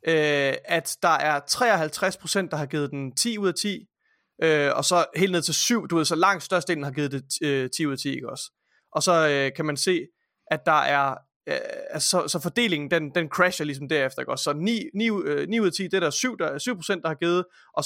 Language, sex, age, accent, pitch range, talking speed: Danish, male, 30-49, native, 145-180 Hz, 235 wpm